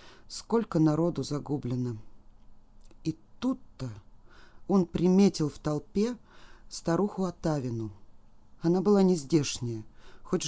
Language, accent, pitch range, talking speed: Russian, native, 140-195 Hz, 85 wpm